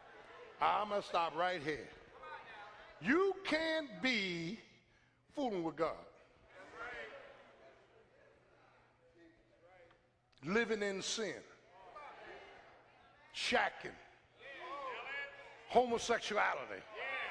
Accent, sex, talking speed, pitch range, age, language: American, male, 55 wpm, 225-320 Hz, 50-69, English